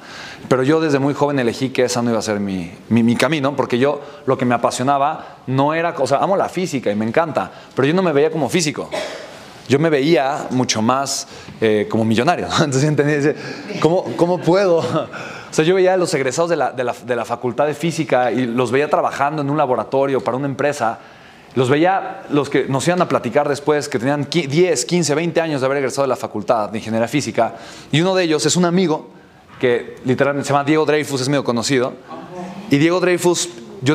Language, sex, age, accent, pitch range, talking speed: Spanish, male, 30-49, Mexican, 120-155 Hz, 215 wpm